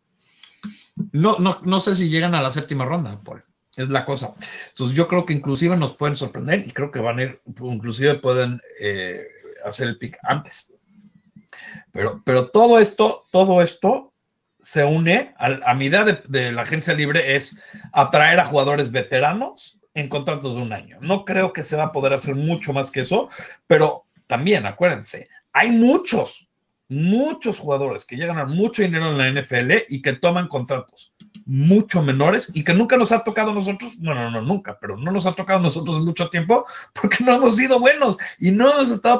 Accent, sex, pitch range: Mexican, male, 135-200 Hz